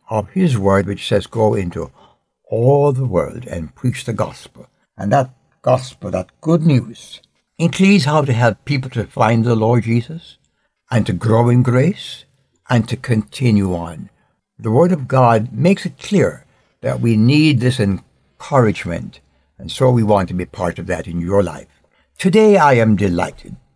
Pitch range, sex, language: 105-145 Hz, male, English